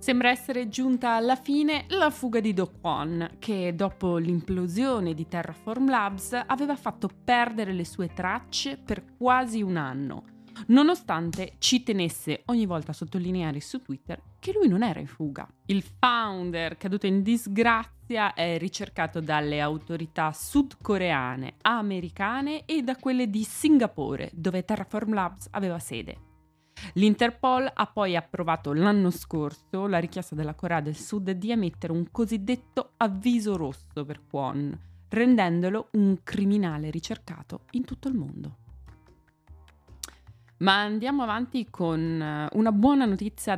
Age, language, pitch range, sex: 20-39, Italian, 160-235 Hz, female